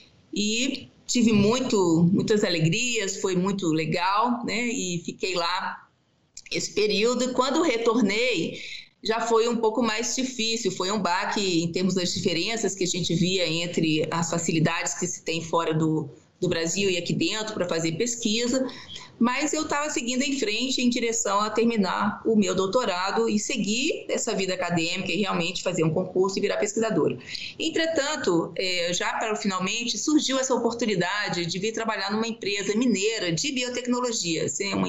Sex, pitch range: female, 185-245 Hz